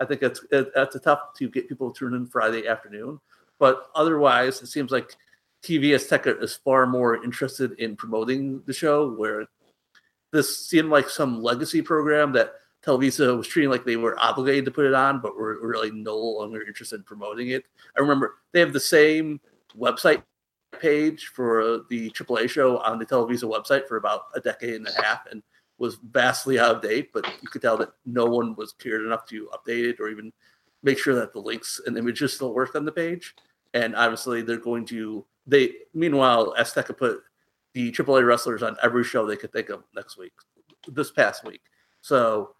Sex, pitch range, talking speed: male, 115-145 Hz, 195 wpm